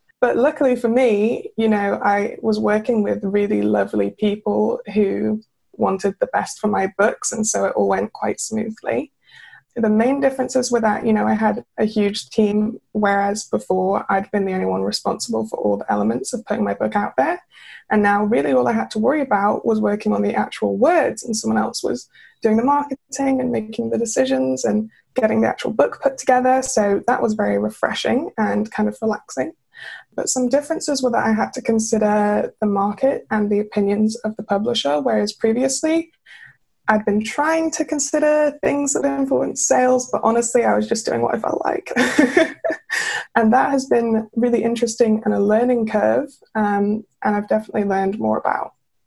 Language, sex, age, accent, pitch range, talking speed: English, female, 20-39, British, 205-250 Hz, 190 wpm